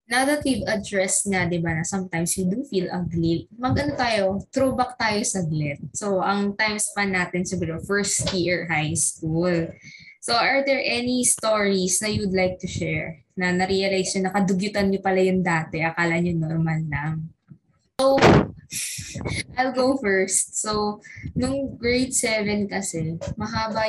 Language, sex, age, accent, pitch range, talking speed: Filipino, female, 20-39, native, 175-225 Hz, 155 wpm